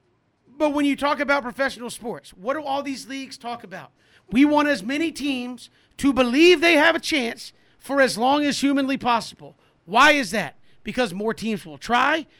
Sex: male